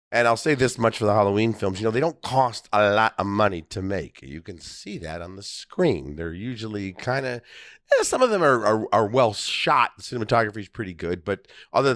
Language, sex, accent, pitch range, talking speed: English, male, American, 90-125 Hz, 225 wpm